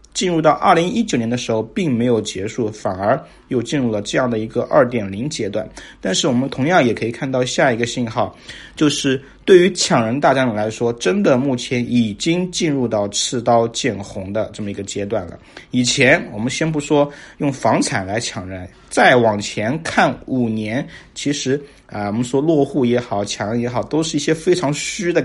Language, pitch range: Chinese, 110-135 Hz